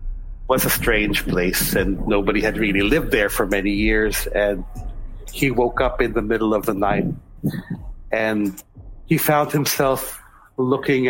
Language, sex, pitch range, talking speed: Filipino, male, 105-140 Hz, 150 wpm